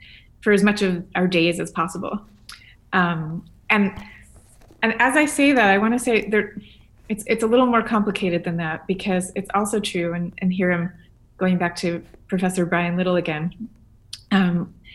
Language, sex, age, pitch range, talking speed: English, female, 30-49, 175-210 Hz, 175 wpm